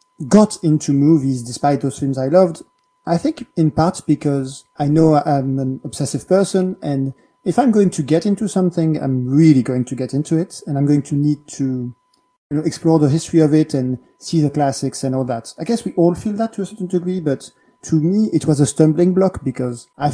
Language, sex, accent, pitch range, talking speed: English, male, French, 135-180 Hz, 220 wpm